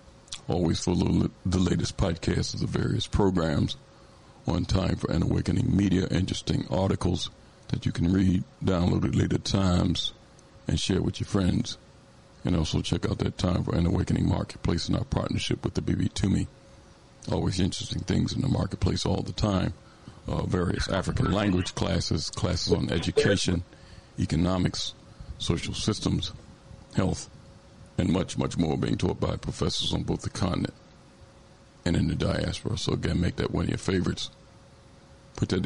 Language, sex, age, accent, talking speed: English, male, 50-69, American, 165 wpm